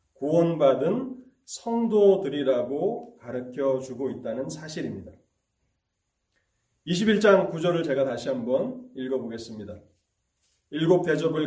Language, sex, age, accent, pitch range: Korean, male, 30-49, native, 120-190 Hz